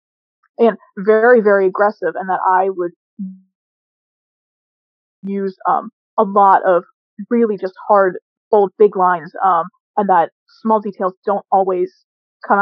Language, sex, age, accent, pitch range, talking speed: English, female, 20-39, American, 190-225 Hz, 130 wpm